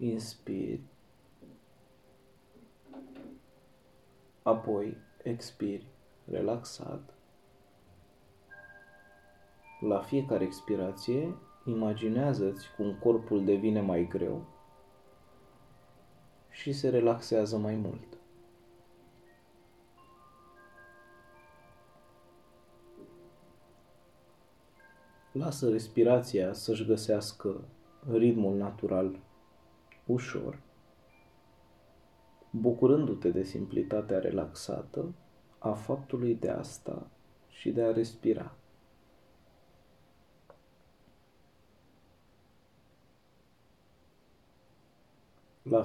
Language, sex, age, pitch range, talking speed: Romanian, male, 30-49, 95-120 Hz, 50 wpm